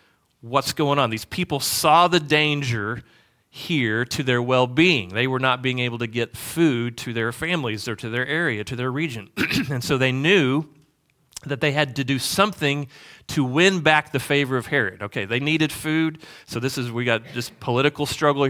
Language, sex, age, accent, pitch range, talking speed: English, male, 40-59, American, 120-150 Hz, 190 wpm